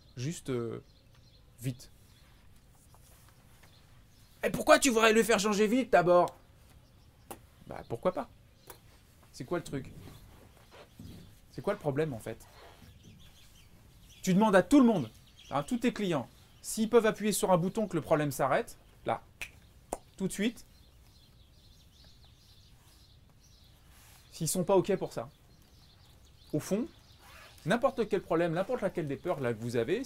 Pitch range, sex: 120-180 Hz, male